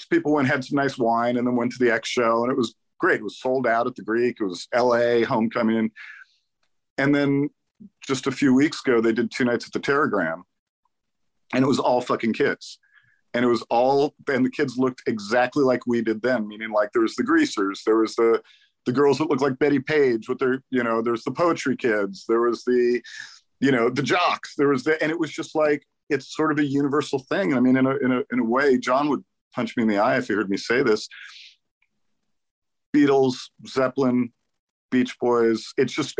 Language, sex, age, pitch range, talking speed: English, male, 40-59, 115-140 Hz, 220 wpm